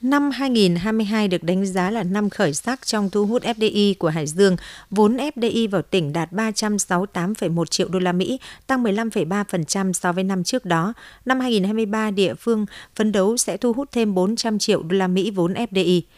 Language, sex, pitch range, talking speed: Vietnamese, female, 180-225 Hz, 185 wpm